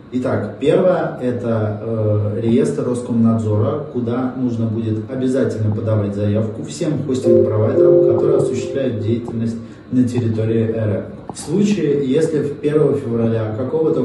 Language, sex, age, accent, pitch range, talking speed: Russian, male, 20-39, native, 115-140 Hz, 115 wpm